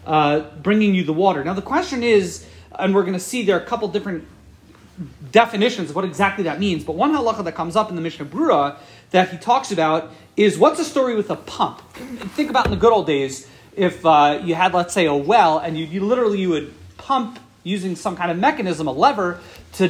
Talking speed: 230 wpm